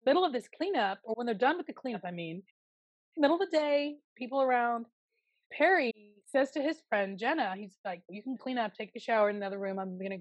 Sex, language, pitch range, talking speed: female, English, 195-260 Hz, 230 wpm